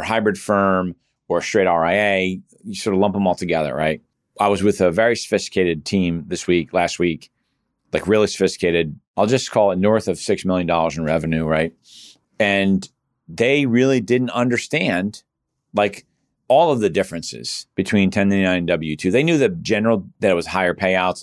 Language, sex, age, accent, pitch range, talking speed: English, male, 40-59, American, 90-105 Hz, 175 wpm